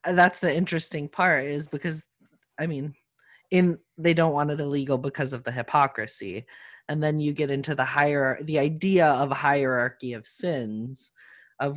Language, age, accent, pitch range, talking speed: English, 20-39, American, 135-160 Hz, 170 wpm